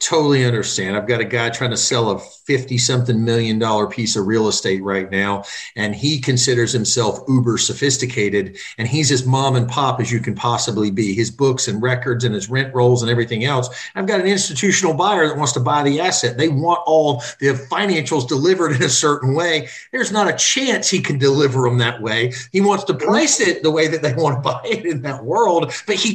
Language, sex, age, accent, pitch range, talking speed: English, male, 50-69, American, 120-155 Hz, 220 wpm